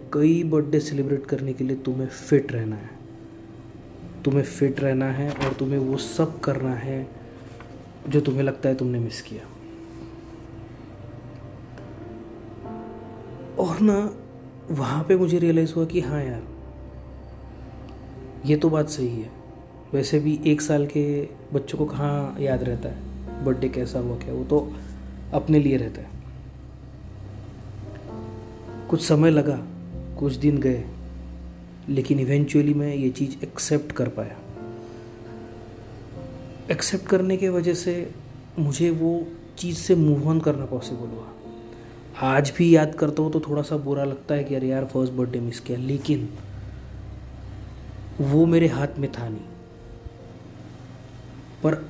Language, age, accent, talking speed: Hindi, 20-39, native, 135 wpm